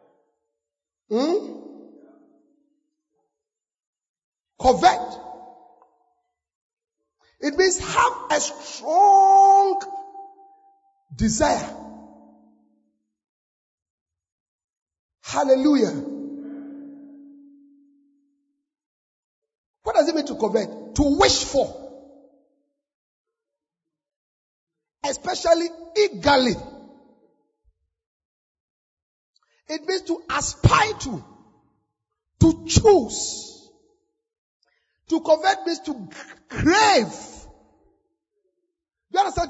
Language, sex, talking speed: English, male, 50 wpm